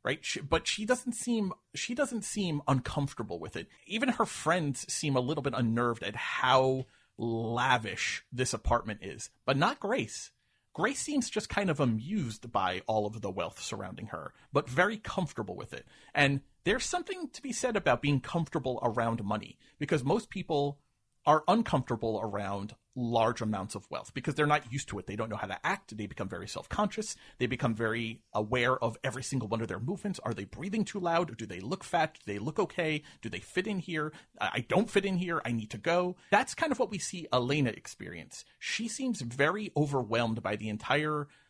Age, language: 40-59, English